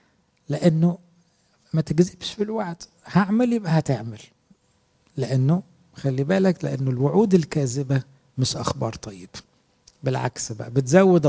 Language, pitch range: English, 130-175 Hz